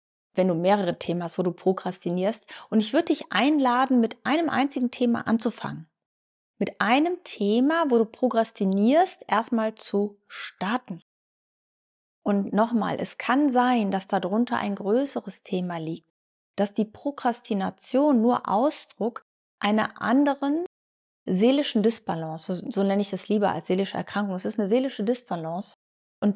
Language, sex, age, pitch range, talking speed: German, female, 30-49, 195-260 Hz, 140 wpm